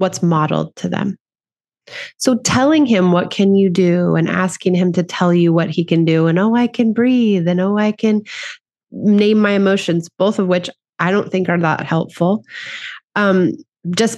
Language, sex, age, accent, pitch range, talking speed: English, female, 30-49, American, 170-215 Hz, 185 wpm